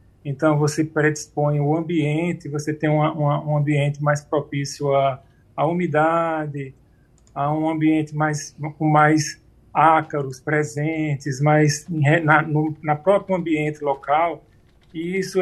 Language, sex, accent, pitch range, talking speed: Portuguese, male, Brazilian, 150-180 Hz, 130 wpm